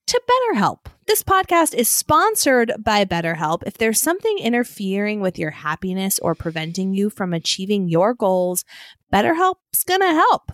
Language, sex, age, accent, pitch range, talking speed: English, female, 20-39, American, 185-250 Hz, 140 wpm